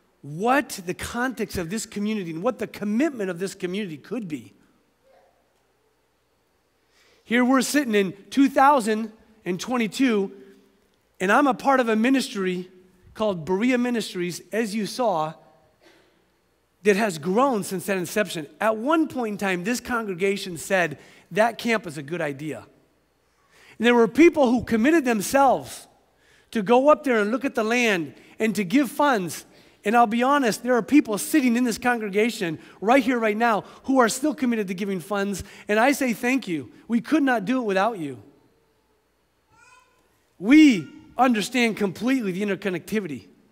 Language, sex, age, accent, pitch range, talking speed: English, male, 40-59, American, 190-255 Hz, 155 wpm